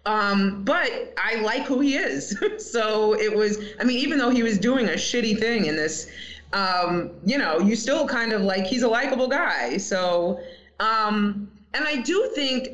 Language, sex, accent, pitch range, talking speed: English, female, American, 195-245 Hz, 190 wpm